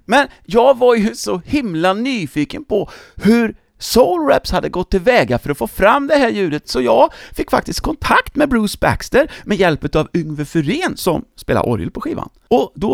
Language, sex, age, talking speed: English, male, 30-49, 195 wpm